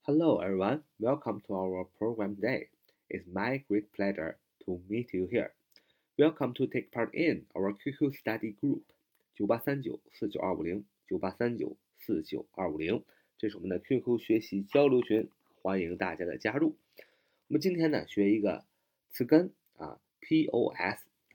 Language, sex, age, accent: Chinese, male, 30-49, native